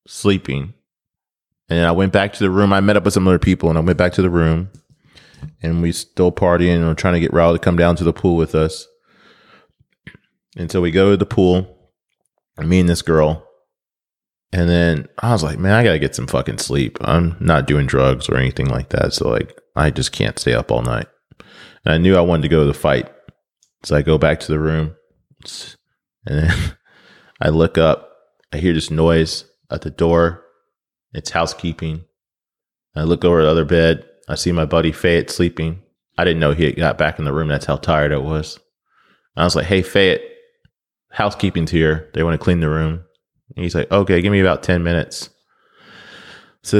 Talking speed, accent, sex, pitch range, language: 210 wpm, American, male, 80-100 Hz, English